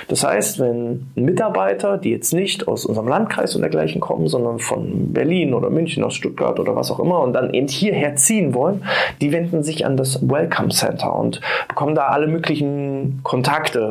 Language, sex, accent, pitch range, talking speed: German, male, German, 130-175 Hz, 185 wpm